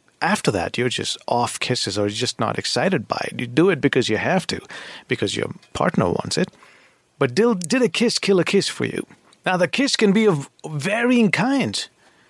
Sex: male